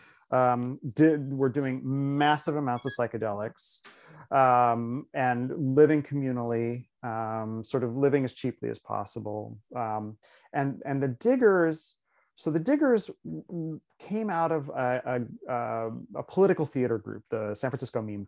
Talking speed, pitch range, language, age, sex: 135 wpm, 120-155 Hz, English, 30-49, male